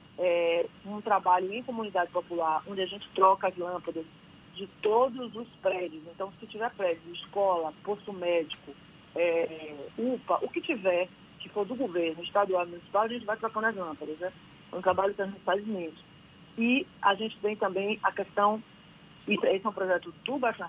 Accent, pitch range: Brazilian, 175-215 Hz